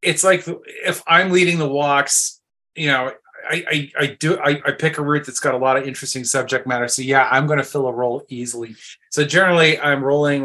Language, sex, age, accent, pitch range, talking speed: English, male, 30-49, American, 125-145 Hz, 225 wpm